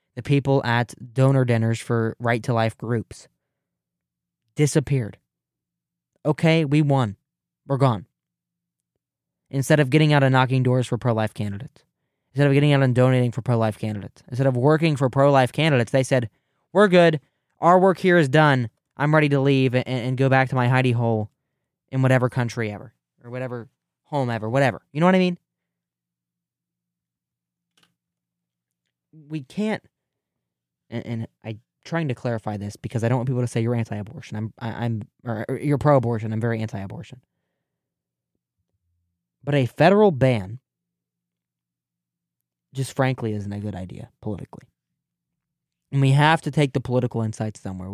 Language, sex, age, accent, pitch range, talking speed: English, male, 20-39, American, 110-140 Hz, 150 wpm